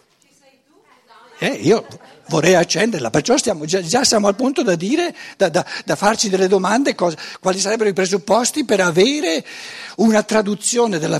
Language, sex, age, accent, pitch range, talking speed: Italian, male, 60-79, native, 155-230 Hz, 140 wpm